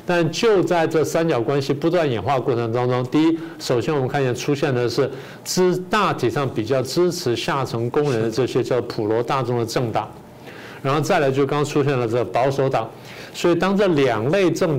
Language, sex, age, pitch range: Chinese, male, 50-69, 120-155 Hz